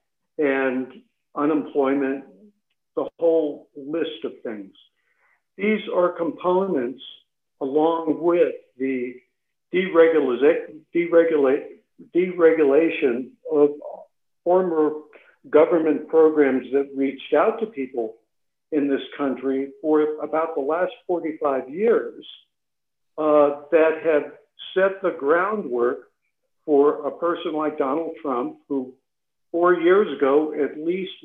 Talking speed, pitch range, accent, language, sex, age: 95 wpm, 145-190 Hz, American, English, male, 60-79